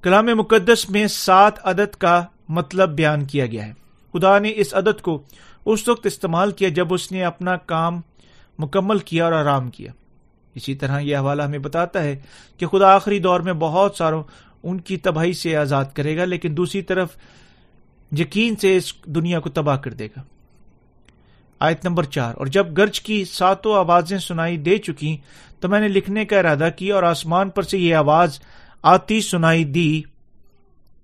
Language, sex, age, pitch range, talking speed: Urdu, male, 40-59, 150-195 Hz, 175 wpm